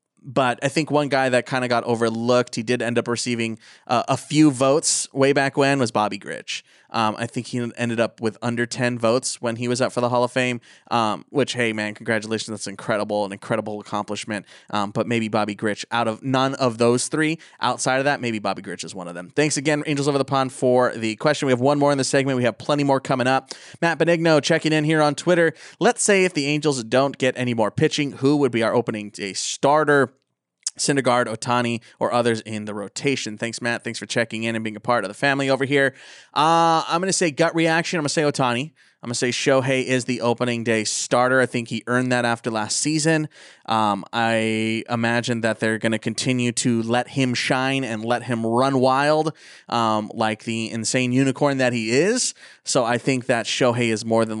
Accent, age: American, 20-39